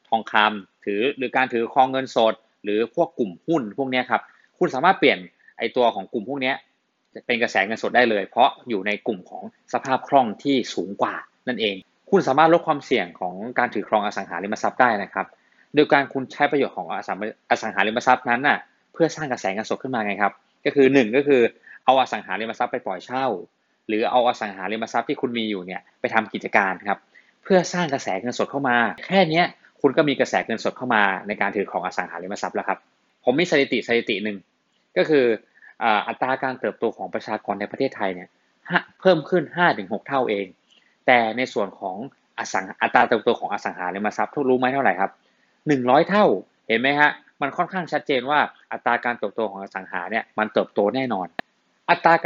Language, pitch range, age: Thai, 105-140 Hz, 20-39